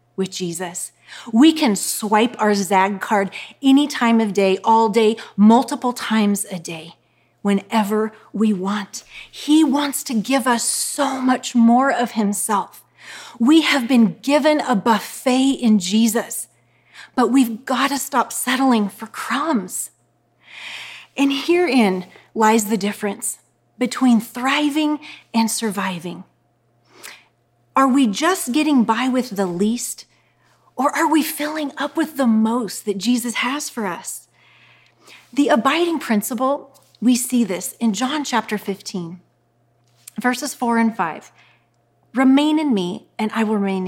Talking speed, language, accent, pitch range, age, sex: 135 wpm, English, American, 200-265 Hz, 30-49, female